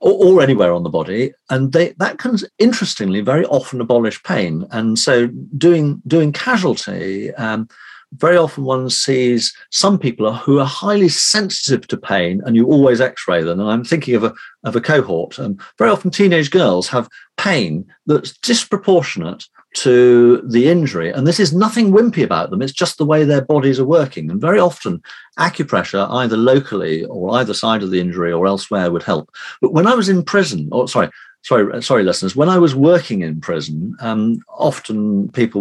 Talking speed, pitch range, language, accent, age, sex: 185 wpm, 95-165 Hz, English, British, 50-69, male